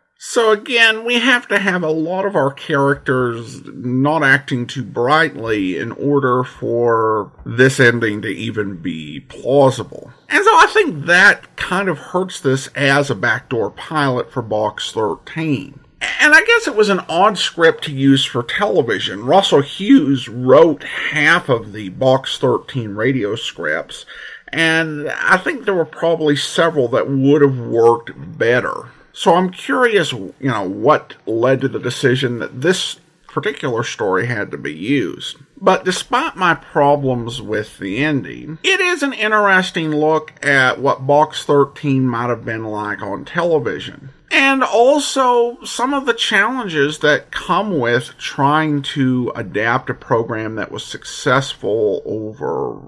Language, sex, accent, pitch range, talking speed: English, male, American, 125-185 Hz, 150 wpm